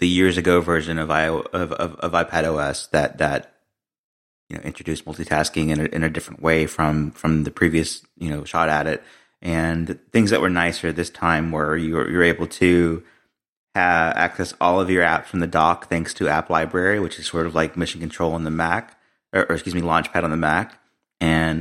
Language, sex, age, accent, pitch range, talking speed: English, male, 30-49, American, 80-90 Hz, 215 wpm